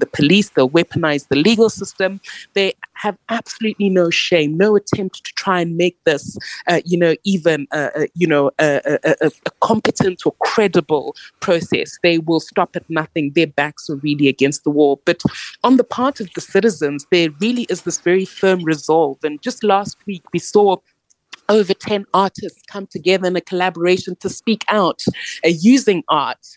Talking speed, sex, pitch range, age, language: 180 wpm, female, 165-210 Hz, 20-39, English